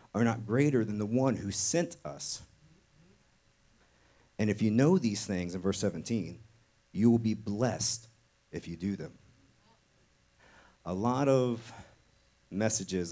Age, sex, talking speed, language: 40-59, male, 135 wpm, English